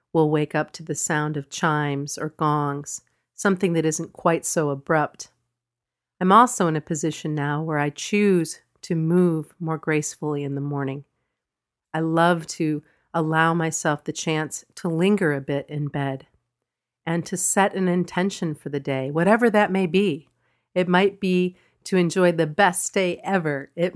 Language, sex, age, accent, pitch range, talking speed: English, female, 40-59, American, 150-175 Hz, 170 wpm